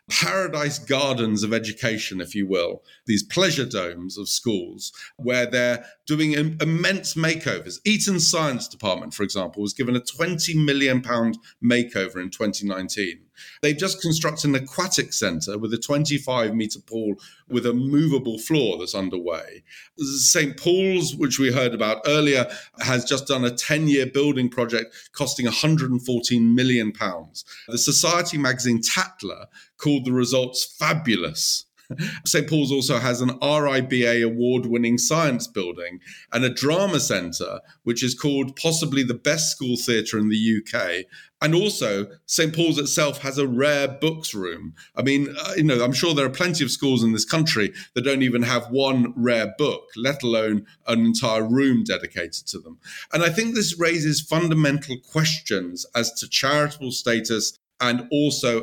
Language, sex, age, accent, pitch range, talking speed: English, male, 40-59, British, 115-150 Hz, 150 wpm